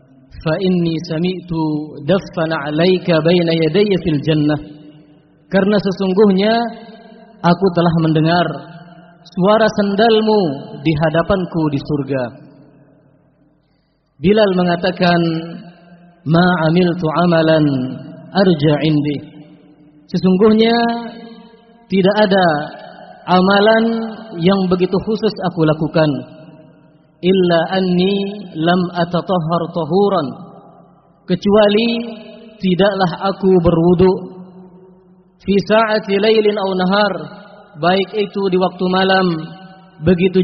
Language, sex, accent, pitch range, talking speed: Indonesian, male, native, 160-195 Hz, 75 wpm